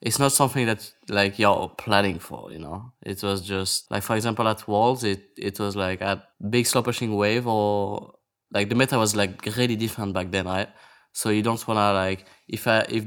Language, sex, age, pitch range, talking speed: English, male, 20-39, 100-115 Hz, 210 wpm